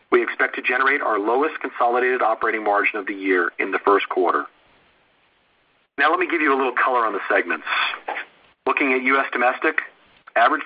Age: 40-59